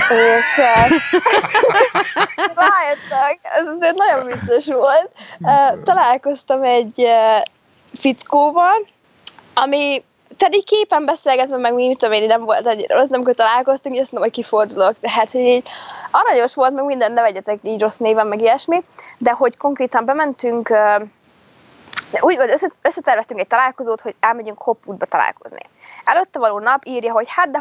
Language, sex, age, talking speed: Hungarian, female, 20-39, 135 wpm